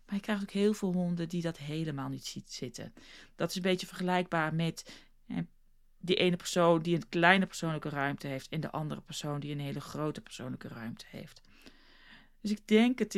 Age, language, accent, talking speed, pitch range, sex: 40-59, Dutch, Dutch, 195 wpm, 160-205 Hz, female